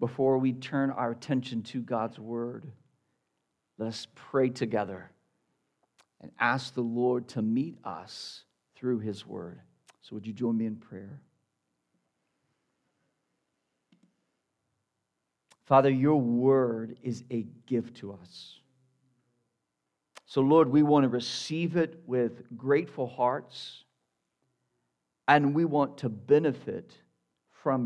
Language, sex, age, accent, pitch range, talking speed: English, male, 50-69, American, 110-130 Hz, 110 wpm